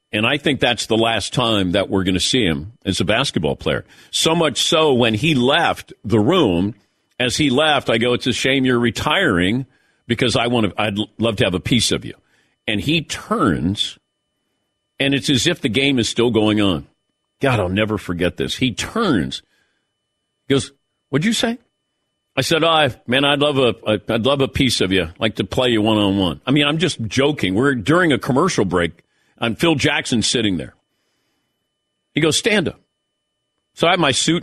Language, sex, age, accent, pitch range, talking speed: English, male, 50-69, American, 110-150 Hz, 200 wpm